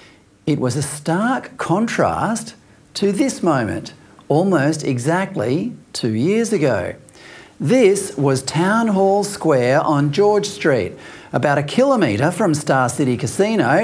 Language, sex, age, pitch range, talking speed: English, male, 40-59, 145-195 Hz, 120 wpm